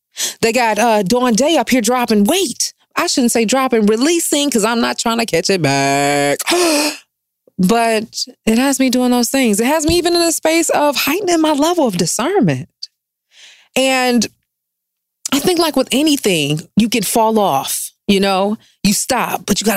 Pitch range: 190-285 Hz